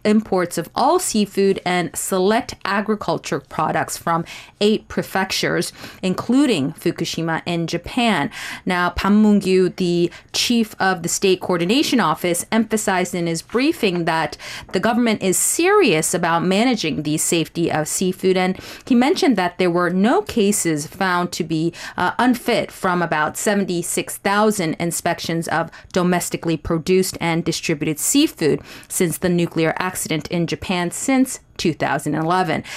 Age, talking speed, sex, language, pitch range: 30-49, 130 wpm, female, English, 170-210 Hz